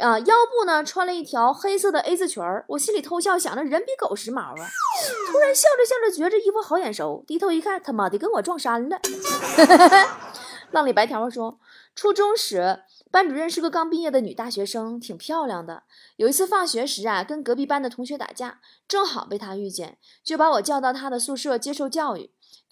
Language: Chinese